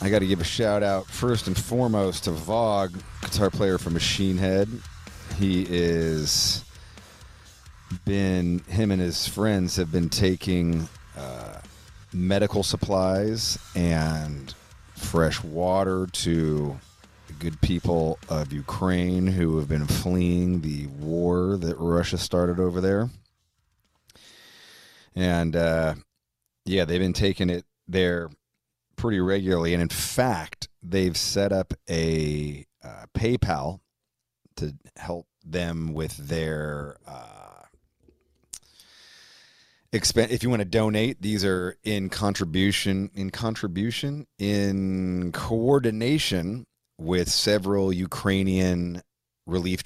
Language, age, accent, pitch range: English, 30-49, American, 85-100 Hz